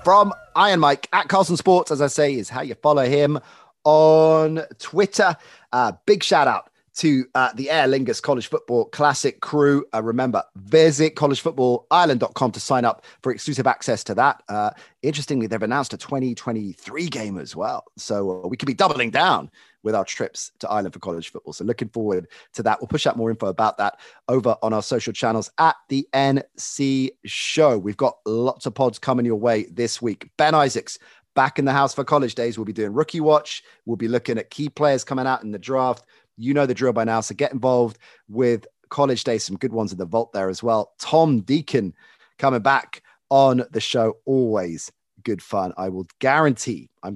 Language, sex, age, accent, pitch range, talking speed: English, male, 30-49, British, 110-145 Hz, 195 wpm